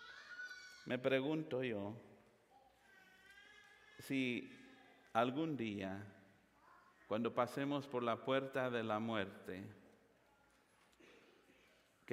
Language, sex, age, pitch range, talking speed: English, male, 50-69, 110-140 Hz, 75 wpm